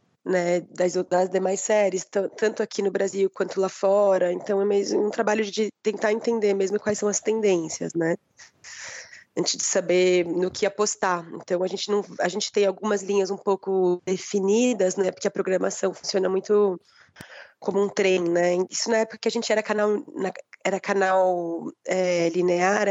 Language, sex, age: Portuguese, female, 20-39